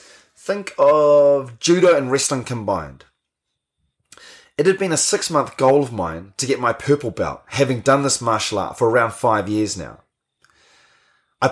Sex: male